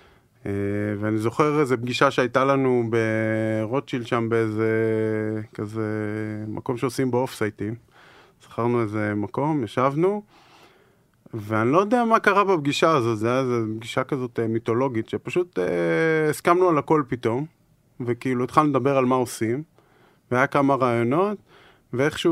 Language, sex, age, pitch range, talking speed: Hebrew, male, 20-39, 115-150 Hz, 125 wpm